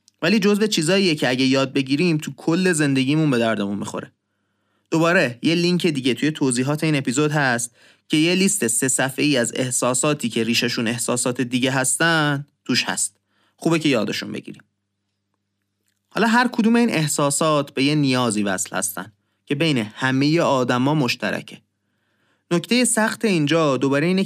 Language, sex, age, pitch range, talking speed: Persian, male, 30-49, 115-160 Hz, 150 wpm